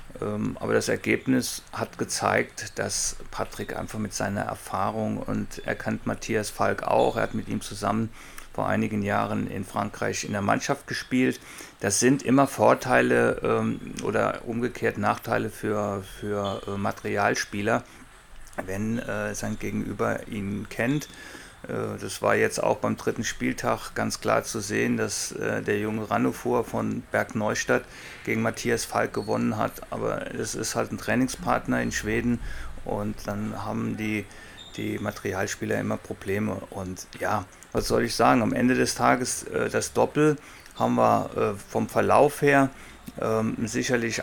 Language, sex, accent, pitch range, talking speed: German, male, German, 100-115 Hz, 140 wpm